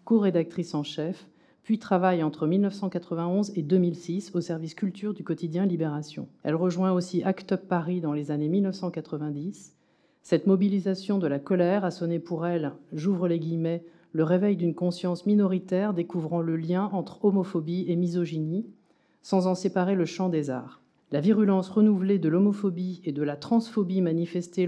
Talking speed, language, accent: 160 wpm, French, French